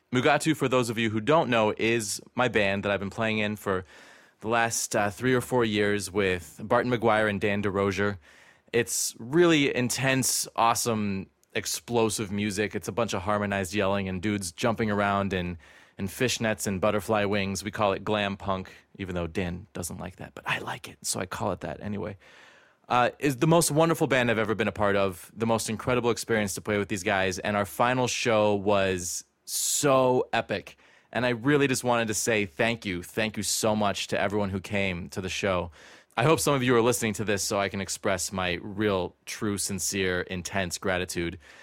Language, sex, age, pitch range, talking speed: English, male, 20-39, 95-115 Hz, 200 wpm